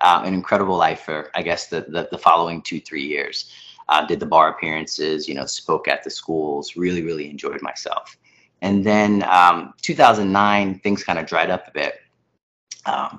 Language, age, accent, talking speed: English, 30-49, American, 185 wpm